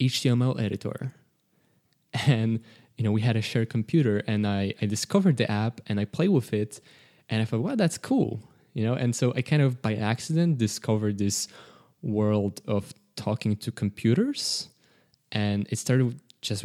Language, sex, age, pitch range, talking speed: English, male, 20-39, 105-135 Hz, 170 wpm